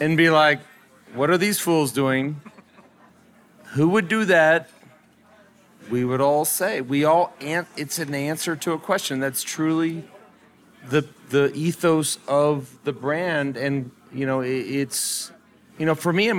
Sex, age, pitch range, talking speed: male, 40-59, 125-160 Hz, 155 wpm